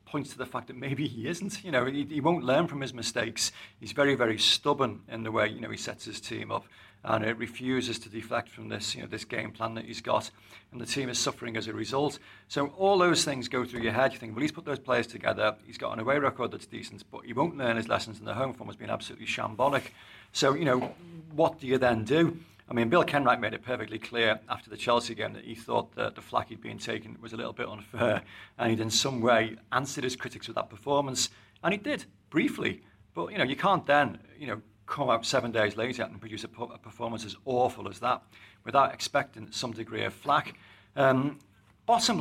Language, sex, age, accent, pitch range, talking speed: English, male, 40-59, British, 110-130 Hz, 240 wpm